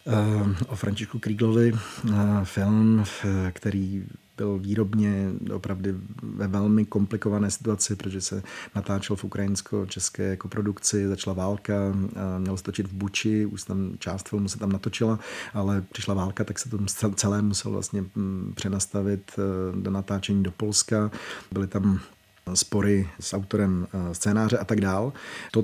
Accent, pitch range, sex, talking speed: native, 95-105 Hz, male, 130 wpm